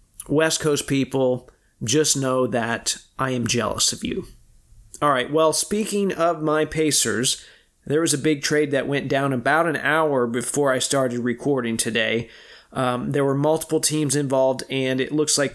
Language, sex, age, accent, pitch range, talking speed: English, male, 30-49, American, 130-150 Hz, 170 wpm